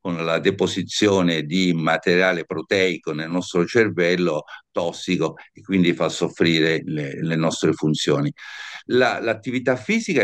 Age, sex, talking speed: 50-69, male, 125 wpm